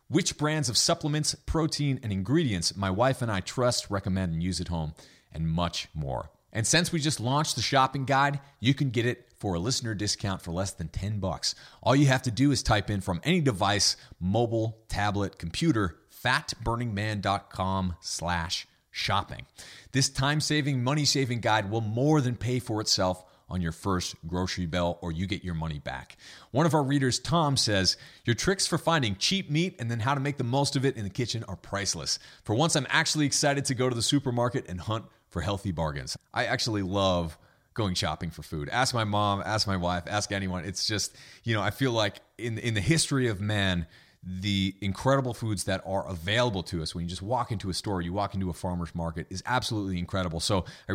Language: English